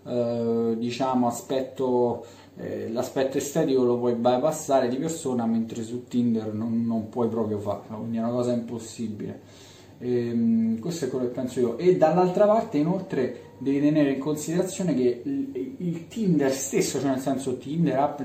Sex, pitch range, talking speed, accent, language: male, 125-155 Hz, 160 wpm, native, Italian